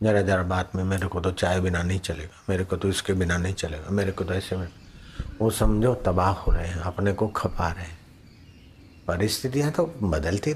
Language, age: Hindi, 60-79